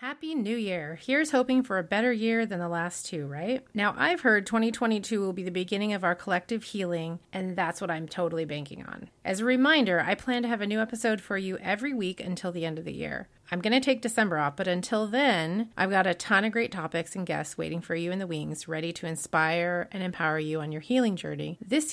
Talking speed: 240 wpm